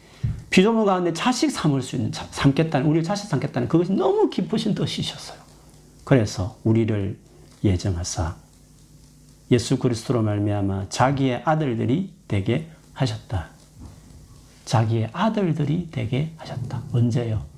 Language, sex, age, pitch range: Korean, male, 40-59, 110-155 Hz